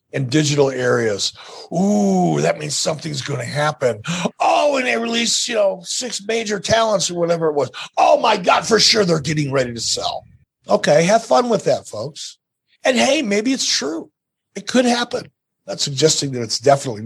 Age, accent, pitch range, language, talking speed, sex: 50-69, American, 145-215 Hz, English, 185 wpm, male